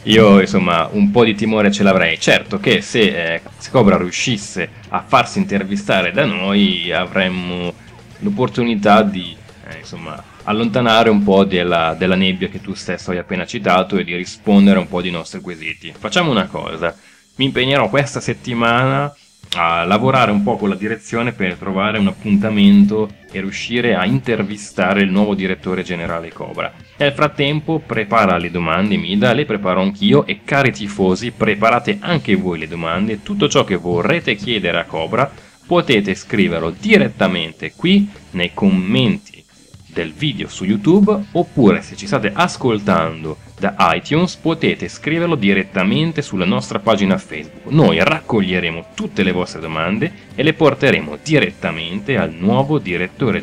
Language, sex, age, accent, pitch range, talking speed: Italian, male, 20-39, native, 90-135 Hz, 150 wpm